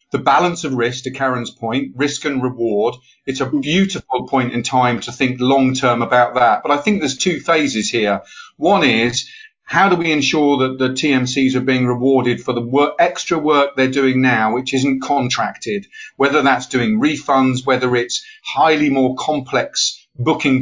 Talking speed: 180 wpm